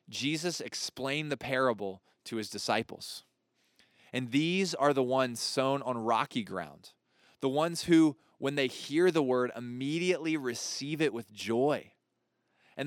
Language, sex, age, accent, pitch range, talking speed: English, male, 20-39, American, 115-145 Hz, 140 wpm